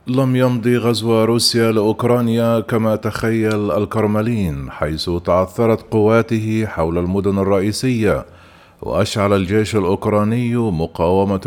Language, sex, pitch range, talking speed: Arabic, male, 95-115 Hz, 95 wpm